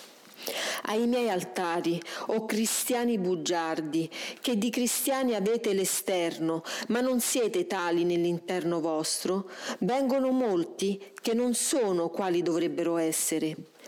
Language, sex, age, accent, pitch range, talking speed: Italian, female, 40-59, native, 175-250 Hz, 110 wpm